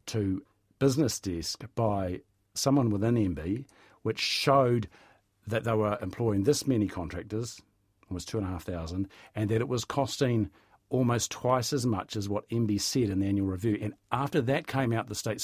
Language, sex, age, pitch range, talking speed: English, male, 50-69, 100-125 Hz, 185 wpm